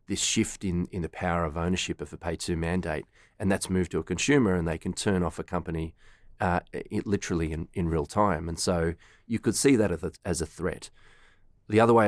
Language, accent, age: English, Australian, 30-49